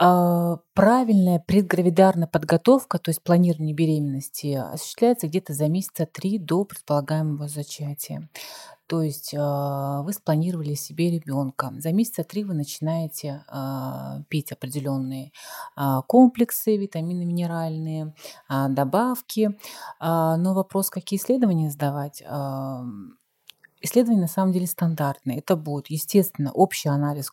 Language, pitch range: Russian, 150-185 Hz